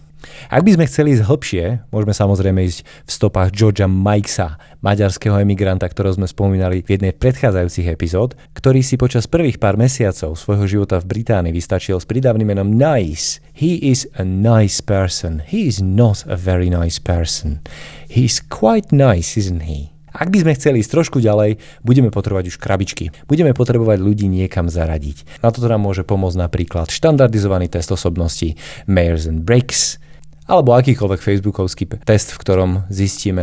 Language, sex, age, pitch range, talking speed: Slovak, male, 30-49, 90-120 Hz, 140 wpm